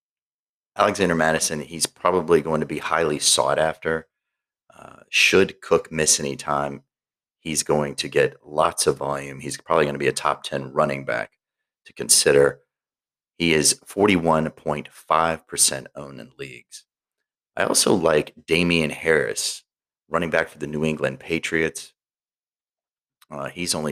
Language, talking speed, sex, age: English, 140 wpm, male, 30-49